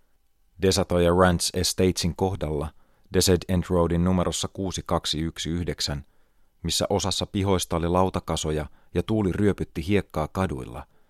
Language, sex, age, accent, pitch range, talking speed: Finnish, male, 30-49, native, 75-95 Hz, 105 wpm